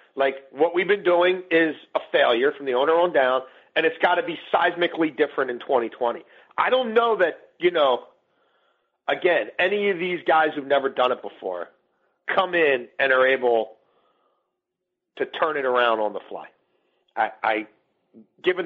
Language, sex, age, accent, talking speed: English, male, 40-59, American, 170 wpm